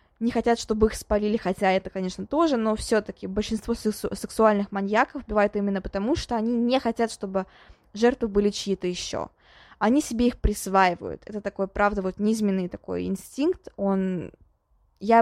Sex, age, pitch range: female, 20-39, 195-235 Hz